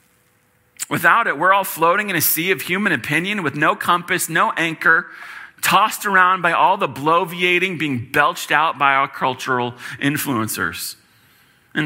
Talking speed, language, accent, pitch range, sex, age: 150 wpm, English, American, 135-170 Hz, male, 30-49